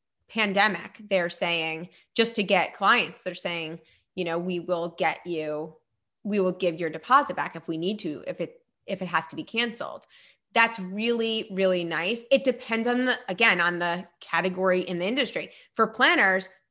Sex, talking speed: female, 180 wpm